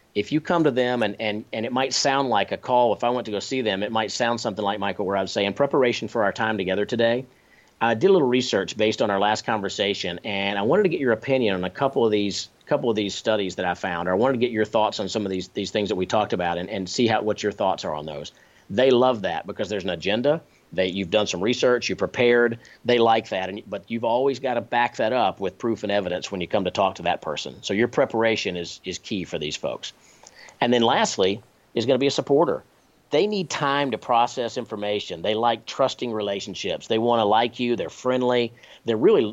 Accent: American